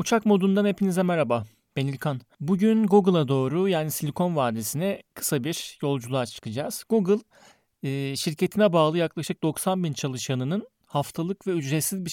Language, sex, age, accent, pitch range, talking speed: Turkish, male, 40-59, native, 130-170 Hz, 135 wpm